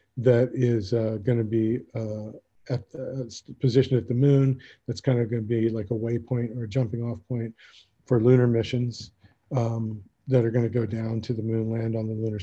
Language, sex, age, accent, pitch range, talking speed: English, male, 40-59, American, 110-125 Hz, 210 wpm